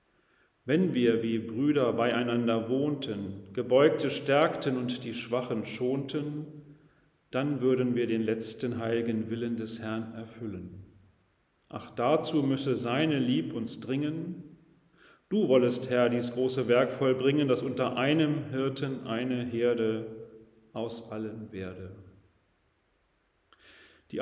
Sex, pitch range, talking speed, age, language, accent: male, 110-135 Hz, 115 wpm, 40-59, German, German